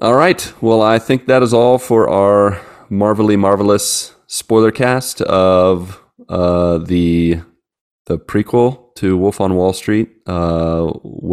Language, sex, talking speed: English, male, 130 wpm